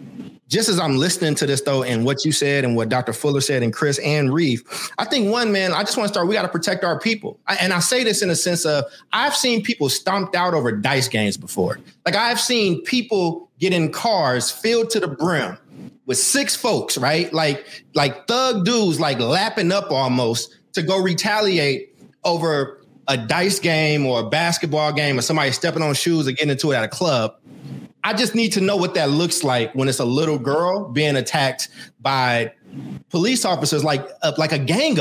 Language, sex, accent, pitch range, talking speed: English, male, American, 140-195 Hz, 210 wpm